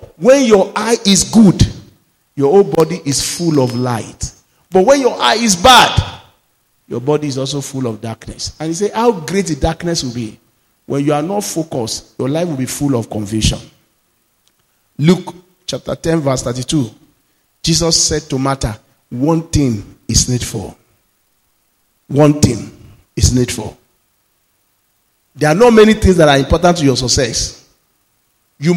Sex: male